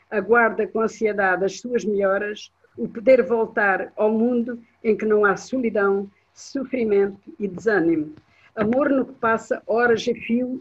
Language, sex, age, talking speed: Portuguese, female, 50-69, 145 wpm